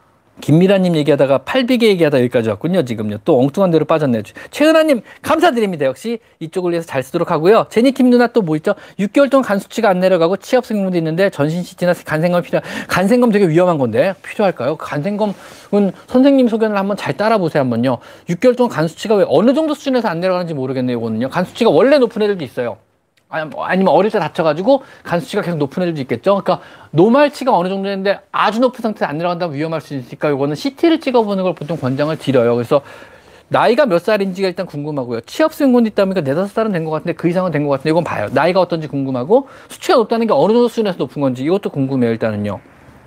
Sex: male